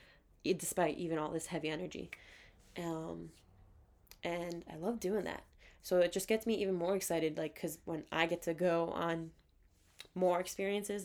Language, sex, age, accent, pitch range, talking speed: English, female, 10-29, American, 150-185 Hz, 165 wpm